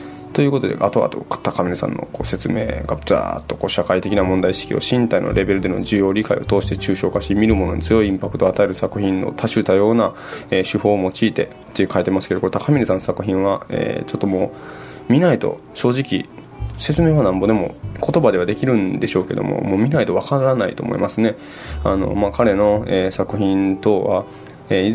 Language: Japanese